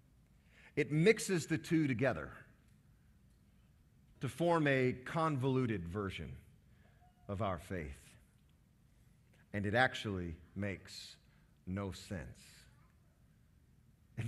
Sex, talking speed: male, 85 wpm